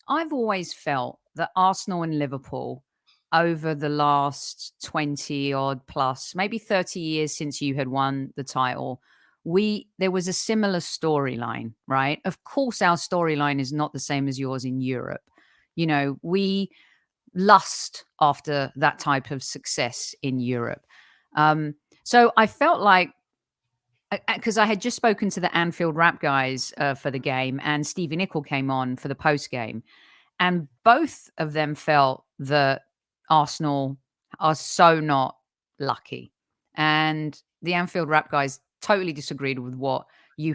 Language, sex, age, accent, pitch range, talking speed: English, female, 50-69, British, 140-185 Hz, 150 wpm